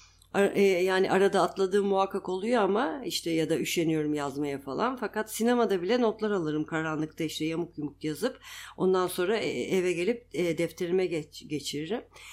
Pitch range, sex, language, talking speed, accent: 160-225 Hz, female, Turkish, 135 wpm, native